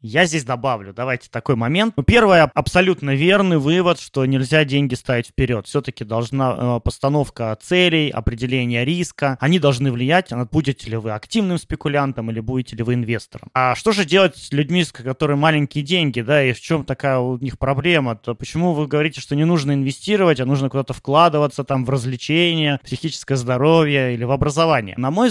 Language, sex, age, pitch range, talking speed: Russian, male, 20-39, 125-160 Hz, 180 wpm